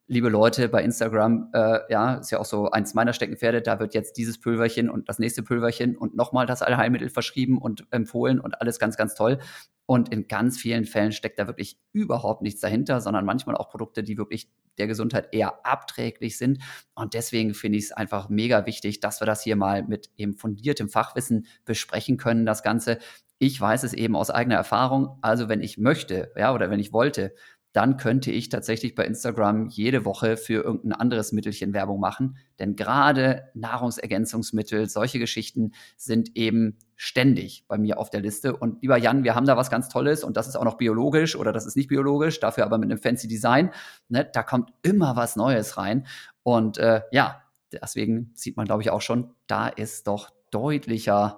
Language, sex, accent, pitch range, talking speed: German, male, German, 110-125 Hz, 195 wpm